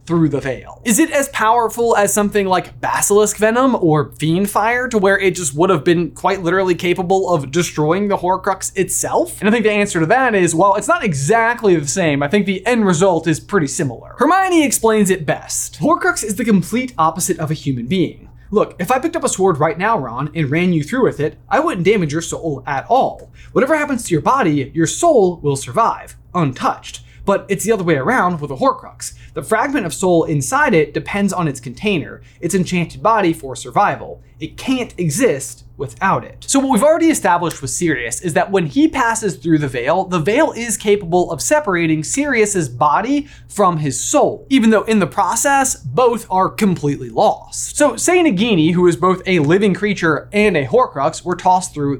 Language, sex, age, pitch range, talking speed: English, male, 20-39, 155-220 Hz, 205 wpm